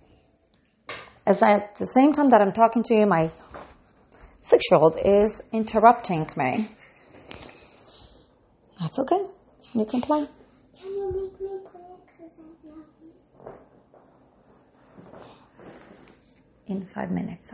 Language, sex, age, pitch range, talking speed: English, female, 30-49, 180-280 Hz, 90 wpm